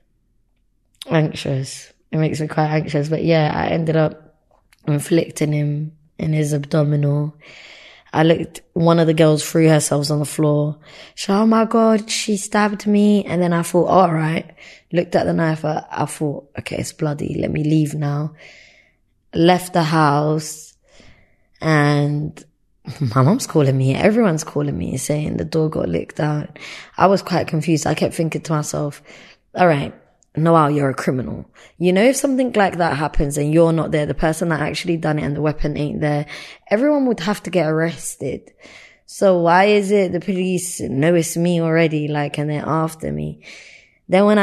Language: English